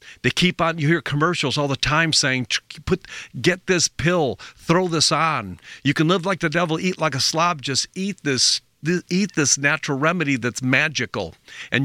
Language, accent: English, American